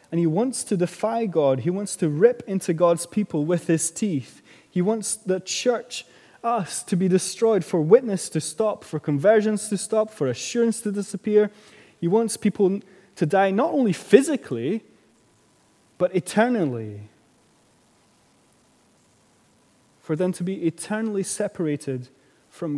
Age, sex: 20-39, male